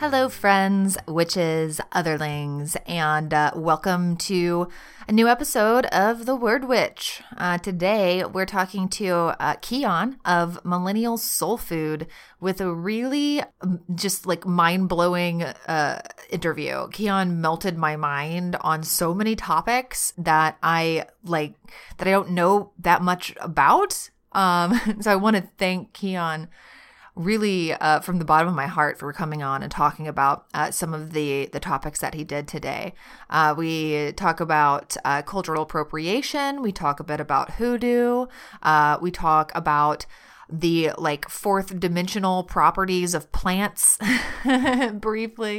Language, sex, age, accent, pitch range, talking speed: English, female, 30-49, American, 155-200 Hz, 140 wpm